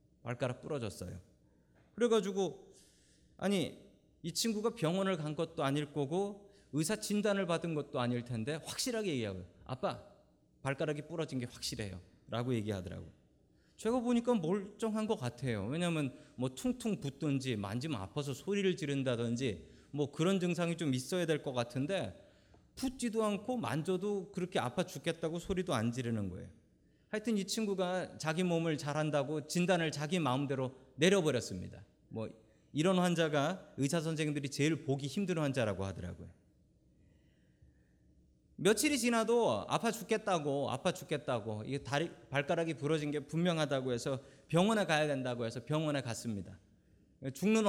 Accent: native